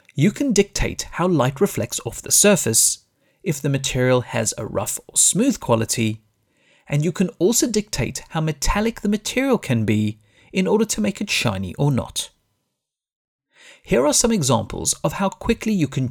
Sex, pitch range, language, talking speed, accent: male, 115-185 Hz, English, 170 wpm, British